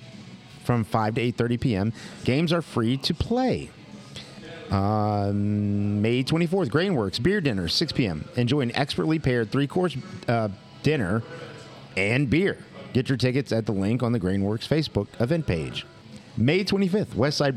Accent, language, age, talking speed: American, English, 50-69, 140 wpm